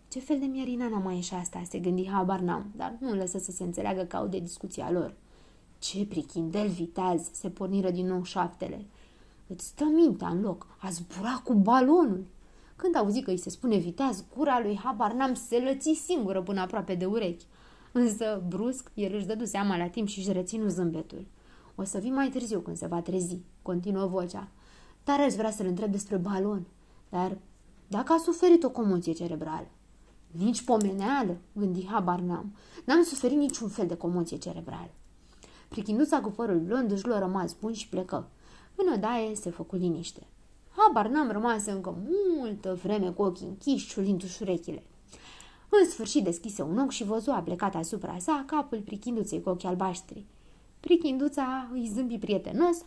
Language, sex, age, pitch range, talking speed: Romanian, female, 20-39, 185-250 Hz, 165 wpm